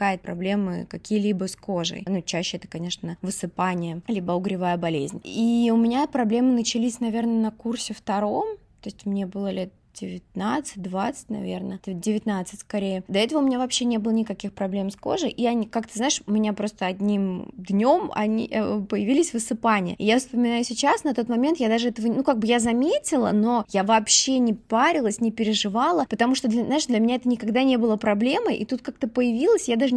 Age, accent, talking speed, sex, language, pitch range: 20-39, native, 190 wpm, female, Russian, 195-245 Hz